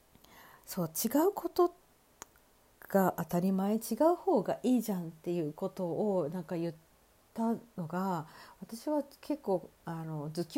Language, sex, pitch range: Japanese, female, 175-245 Hz